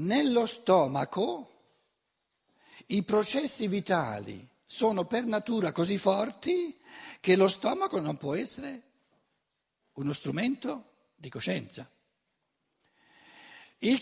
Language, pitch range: Italian, 165-245 Hz